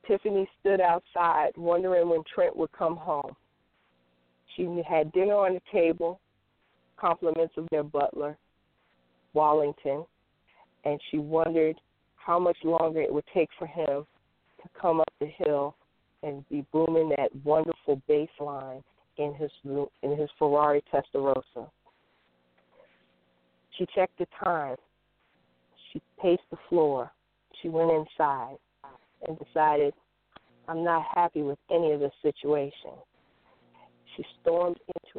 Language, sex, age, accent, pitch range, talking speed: English, female, 40-59, American, 140-165 Hz, 125 wpm